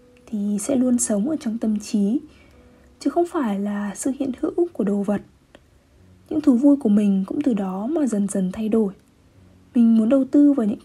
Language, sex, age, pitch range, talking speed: Vietnamese, female, 20-39, 205-275 Hz, 205 wpm